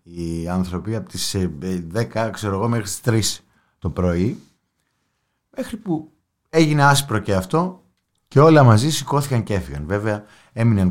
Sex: male